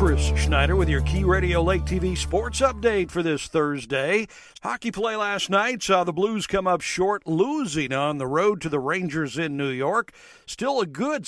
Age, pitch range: 50-69, 145-200 Hz